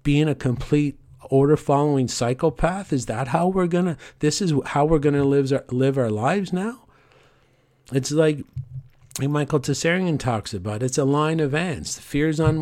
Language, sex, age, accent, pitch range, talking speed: English, male, 50-69, American, 130-165 Hz, 160 wpm